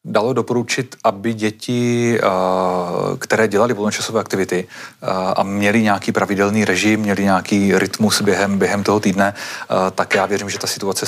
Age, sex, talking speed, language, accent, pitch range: 30-49, male, 140 wpm, Czech, native, 100-115 Hz